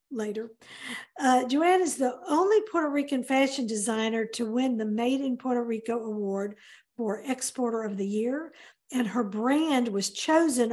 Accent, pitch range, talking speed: American, 220-280 Hz, 155 wpm